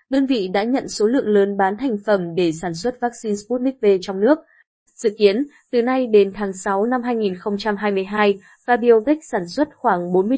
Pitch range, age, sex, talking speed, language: 195-245 Hz, 20-39, female, 185 wpm, Vietnamese